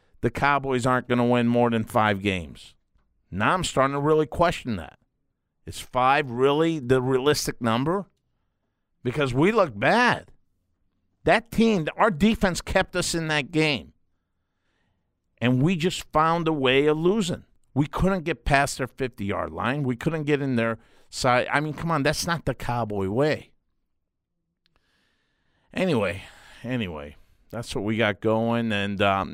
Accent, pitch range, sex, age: American, 115-150 Hz, male, 50-69